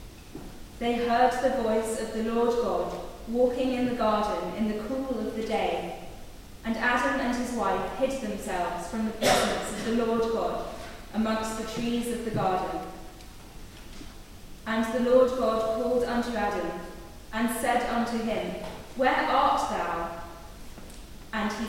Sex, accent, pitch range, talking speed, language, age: female, British, 220-250 Hz, 150 wpm, English, 20-39